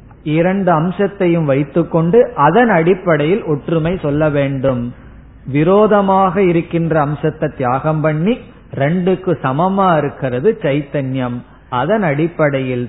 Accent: native